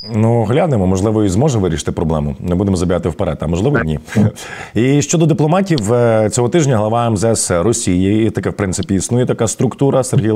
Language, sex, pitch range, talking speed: Ukrainian, male, 105-135 Hz, 175 wpm